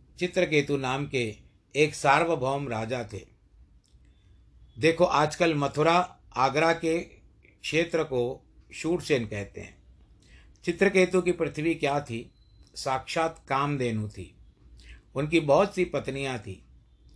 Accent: native